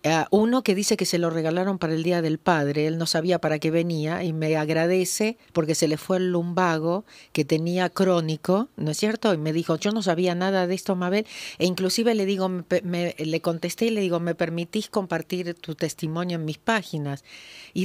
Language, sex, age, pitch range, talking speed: Spanish, female, 50-69, 165-210 Hz, 210 wpm